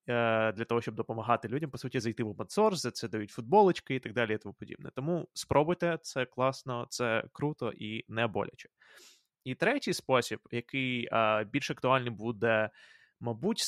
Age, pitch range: 20-39, 115-140 Hz